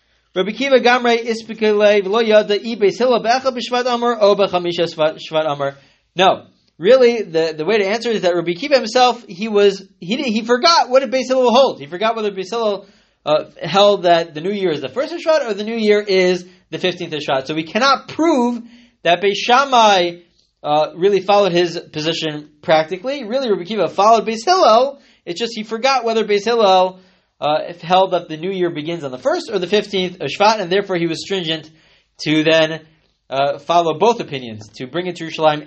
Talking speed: 180 wpm